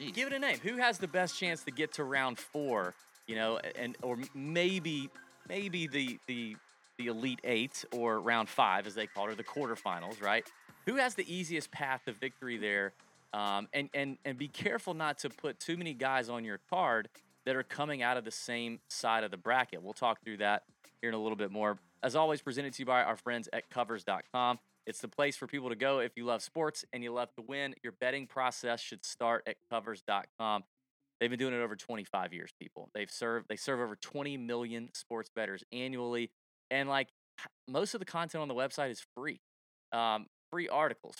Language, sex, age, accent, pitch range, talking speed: English, male, 30-49, American, 115-145 Hz, 210 wpm